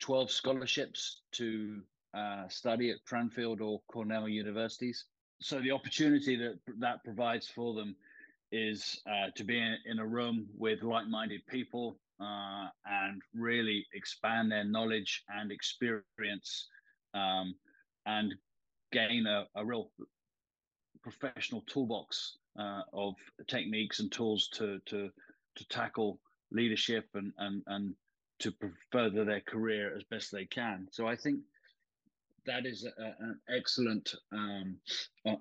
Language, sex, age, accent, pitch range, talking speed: English, male, 30-49, British, 105-120 Hz, 125 wpm